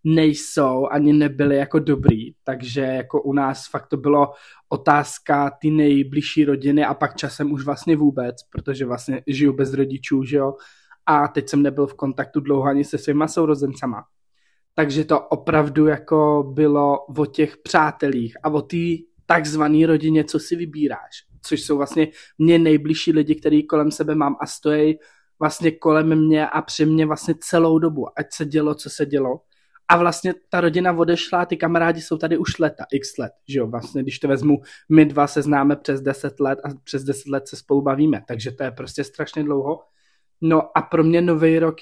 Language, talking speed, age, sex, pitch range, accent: Czech, 180 wpm, 20-39, male, 140-160 Hz, native